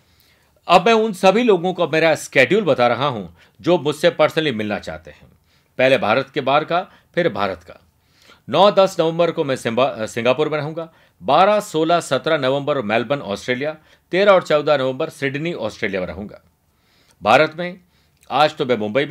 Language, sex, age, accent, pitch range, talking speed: Hindi, male, 50-69, native, 120-165 Hz, 165 wpm